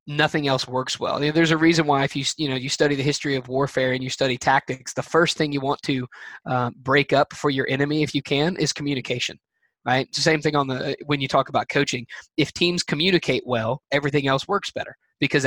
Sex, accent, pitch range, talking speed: male, American, 130-155 Hz, 235 wpm